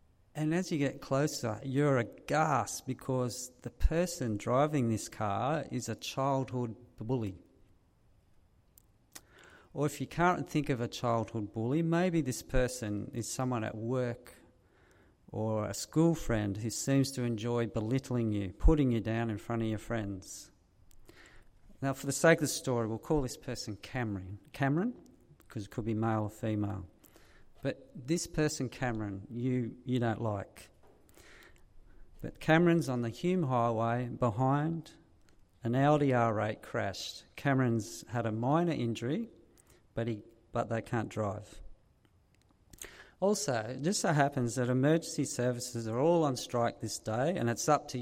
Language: English